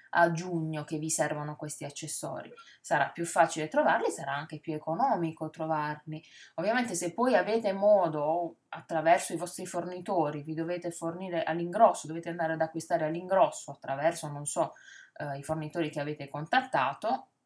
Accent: native